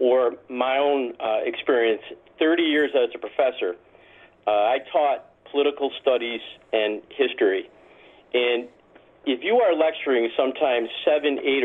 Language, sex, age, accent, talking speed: English, male, 40-59, American, 130 wpm